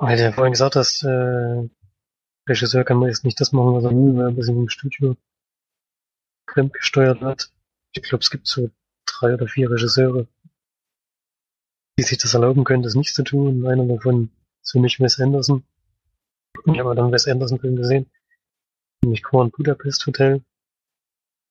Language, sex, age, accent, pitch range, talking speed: German, male, 30-49, German, 115-135 Hz, 160 wpm